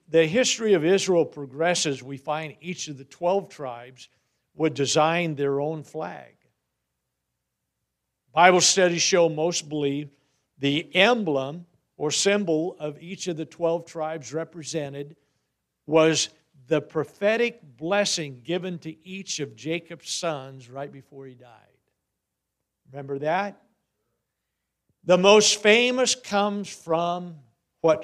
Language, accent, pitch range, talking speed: English, American, 140-175 Hz, 120 wpm